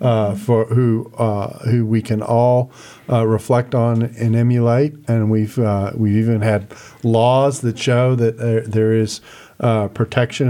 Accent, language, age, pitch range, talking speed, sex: American, English, 50-69, 115-135 Hz, 160 wpm, male